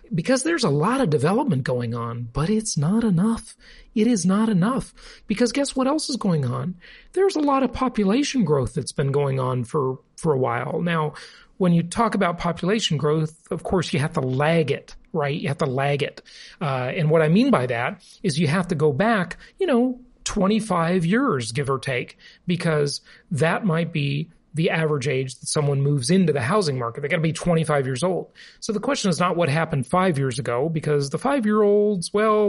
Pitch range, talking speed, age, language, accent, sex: 150-220 Hz, 205 wpm, 40-59, English, American, male